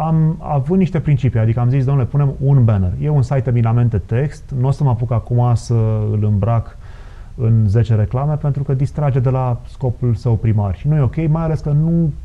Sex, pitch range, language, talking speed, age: male, 115-150 Hz, Romanian, 210 wpm, 30-49